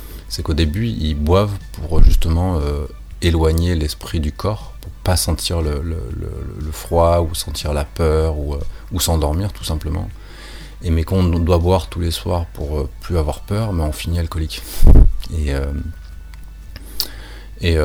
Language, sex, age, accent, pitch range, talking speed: French, male, 30-49, French, 75-90 Hz, 180 wpm